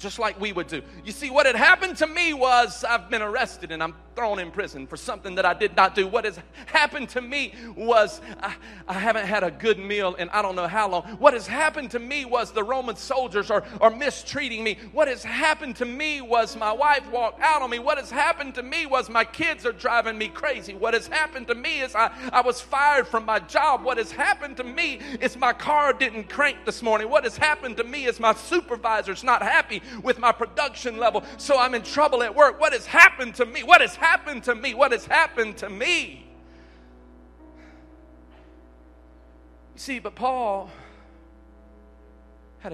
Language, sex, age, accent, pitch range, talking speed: English, male, 40-59, American, 180-260 Hz, 210 wpm